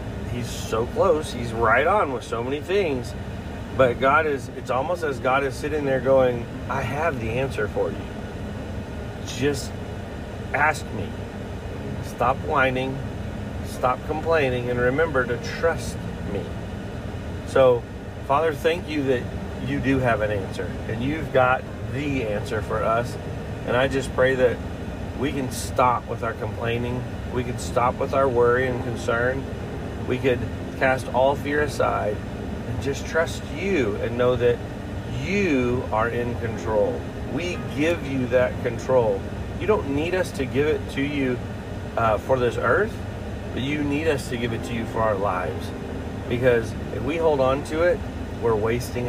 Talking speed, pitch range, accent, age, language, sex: 160 wpm, 100-125 Hz, American, 40-59, English, male